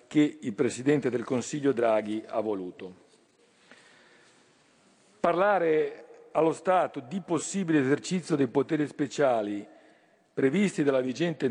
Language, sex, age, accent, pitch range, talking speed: Italian, male, 50-69, native, 130-165 Hz, 105 wpm